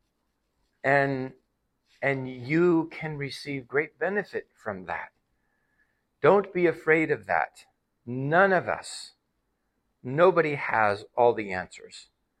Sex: male